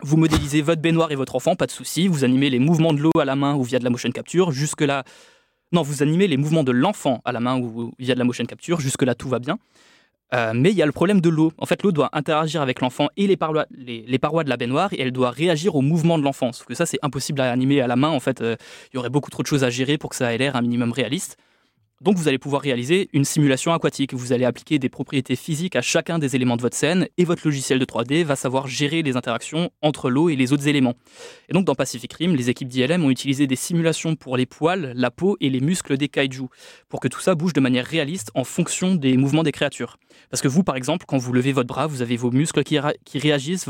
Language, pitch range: French, 130-165 Hz